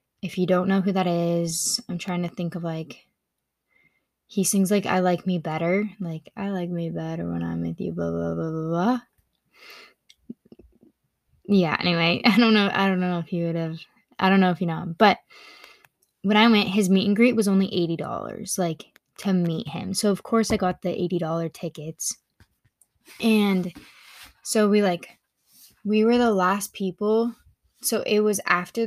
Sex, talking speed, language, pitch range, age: female, 185 wpm, English, 170-205 Hz, 10-29